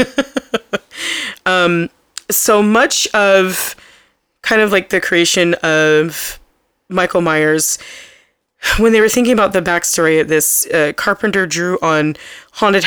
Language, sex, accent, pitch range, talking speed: English, female, American, 155-190 Hz, 120 wpm